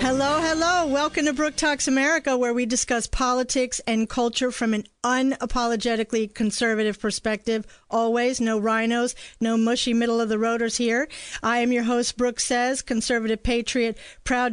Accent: American